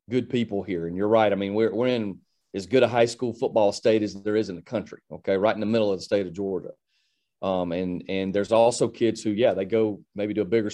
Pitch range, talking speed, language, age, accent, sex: 100-120 Hz, 270 wpm, English, 40-59, American, male